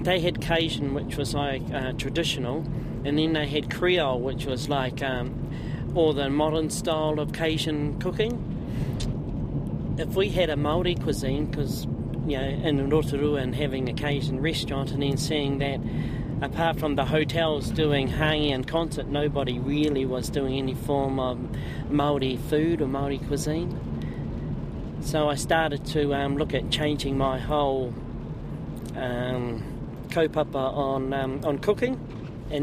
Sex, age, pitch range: male, 40-59, 135-160 Hz